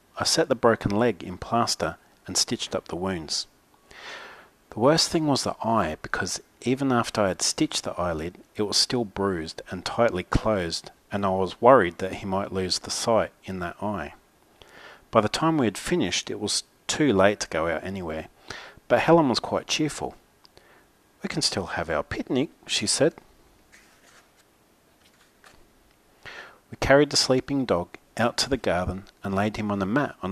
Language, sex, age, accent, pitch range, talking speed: English, male, 40-59, Australian, 95-120 Hz, 175 wpm